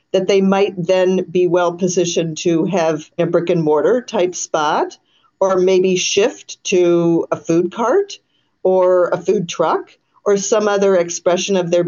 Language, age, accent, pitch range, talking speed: English, 50-69, American, 175-225 Hz, 160 wpm